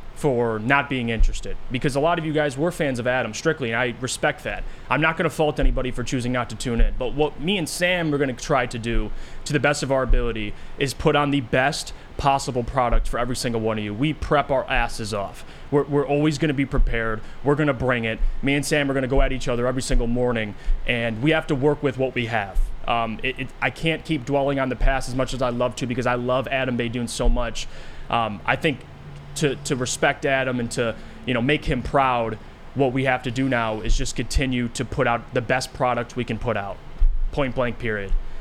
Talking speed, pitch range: 240 wpm, 115-140 Hz